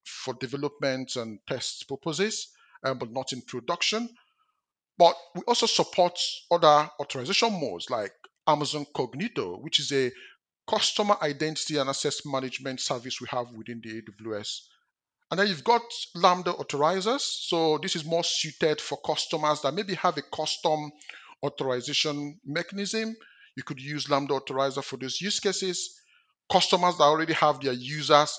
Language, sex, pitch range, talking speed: English, male, 130-175 Hz, 145 wpm